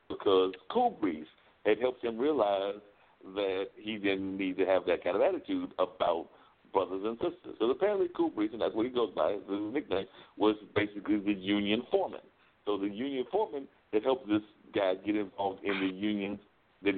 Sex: male